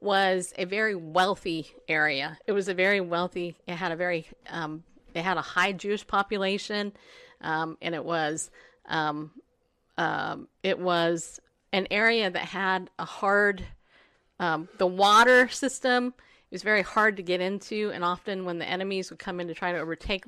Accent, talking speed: American, 170 wpm